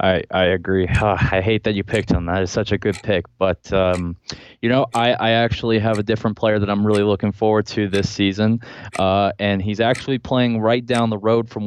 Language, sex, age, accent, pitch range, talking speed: Dutch, male, 20-39, American, 95-110 Hz, 230 wpm